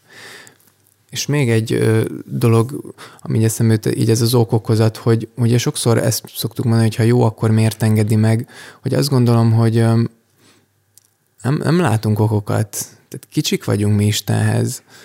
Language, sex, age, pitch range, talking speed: Hungarian, male, 20-39, 110-120 Hz, 150 wpm